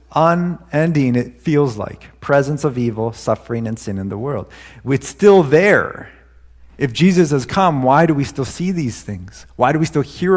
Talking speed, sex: 185 wpm, male